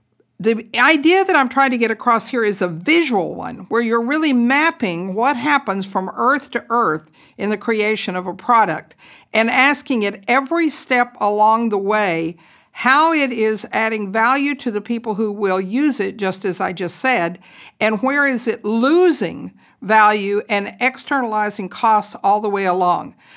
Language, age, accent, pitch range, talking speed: English, 50-69, American, 200-255 Hz, 170 wpm